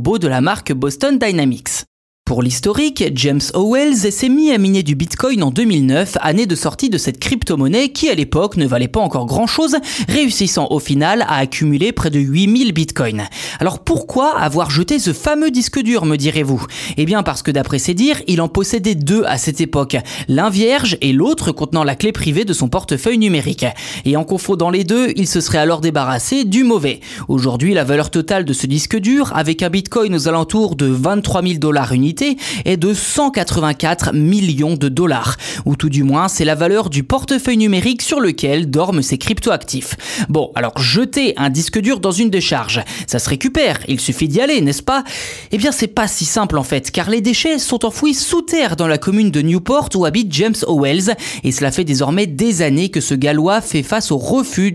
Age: 20-39